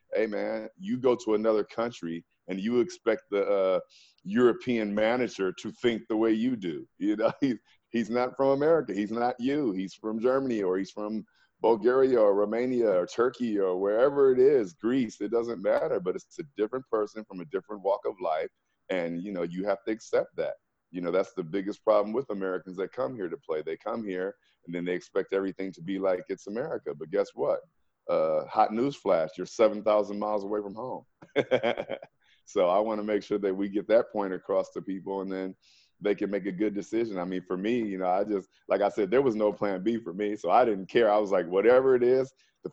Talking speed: 220 wpm